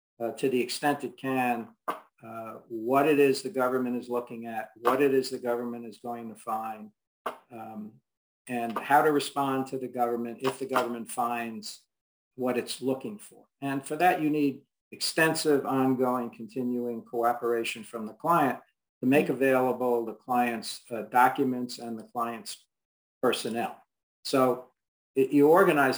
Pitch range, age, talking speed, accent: 115-130 Hz, 50-69, 155 wpm, American